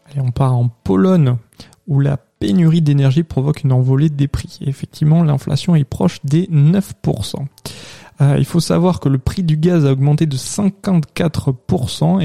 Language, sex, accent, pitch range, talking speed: French, male, French, 135-165 Hz, 165 wpm